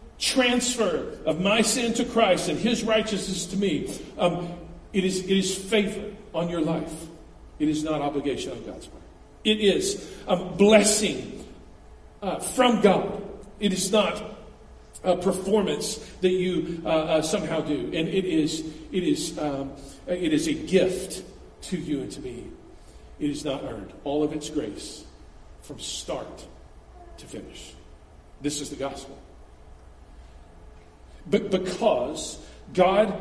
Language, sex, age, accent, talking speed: English, male, 50-69, American, 145 wpm